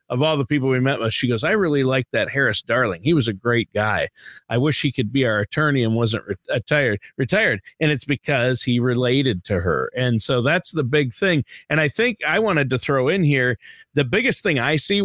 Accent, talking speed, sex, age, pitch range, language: American, 230 wpm, male, 40-59, 120-150 Hz, English